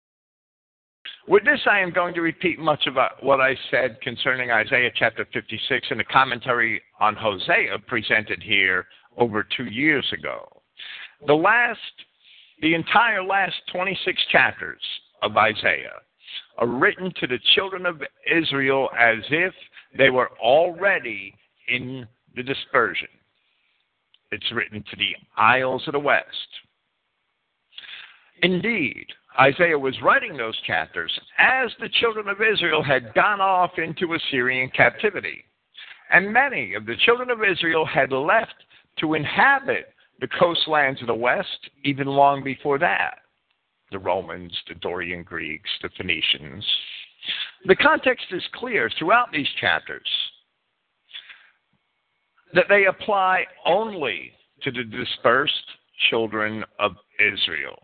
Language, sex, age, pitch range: English, male, 50-69, 125-185 Hz